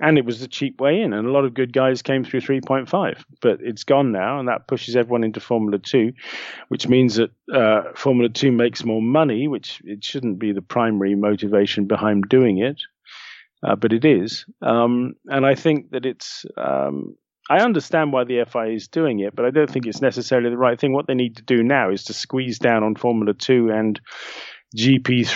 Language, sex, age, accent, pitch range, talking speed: English, male, 40-59, British, 110-135 Hz, 210 wpm